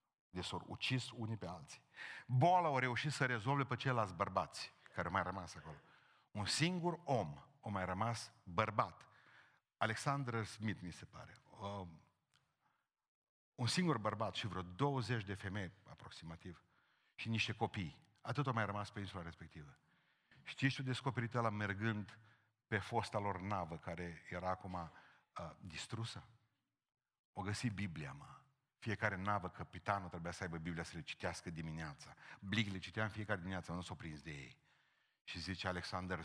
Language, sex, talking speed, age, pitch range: Romanian, male, 150 wpm, 50-69, 90-120 Hz